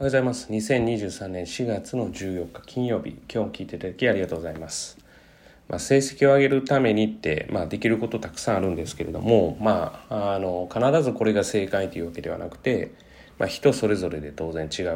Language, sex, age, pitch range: Japanese, male, 30-49, 85-130 Hz